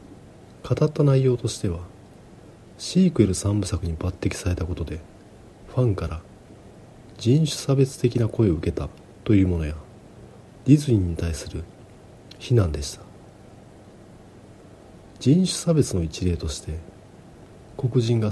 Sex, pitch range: male, 90-120 Hz